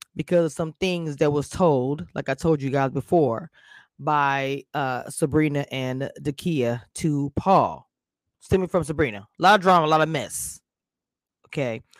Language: English